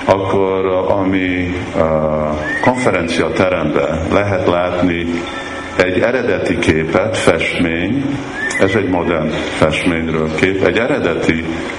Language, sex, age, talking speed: Hungarian, male, 50-69, 80 wpm